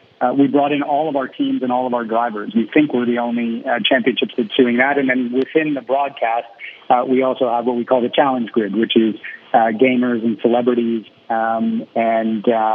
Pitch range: 115-130 Hz